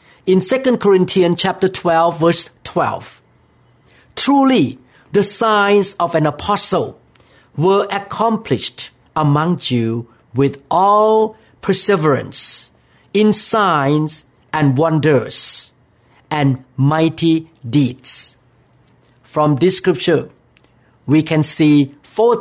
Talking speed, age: 90 wpm, 50-69